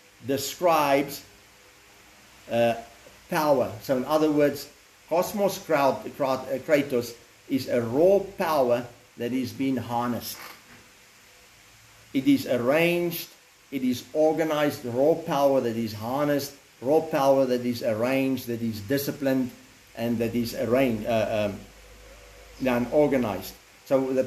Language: English